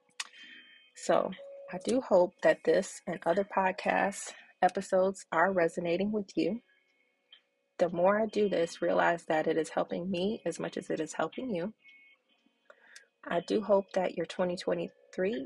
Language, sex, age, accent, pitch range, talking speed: English, female, 30-49, American, 170-220 Hz, 150 wpm